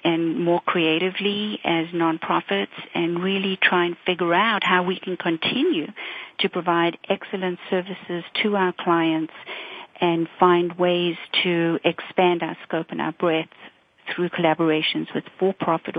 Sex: female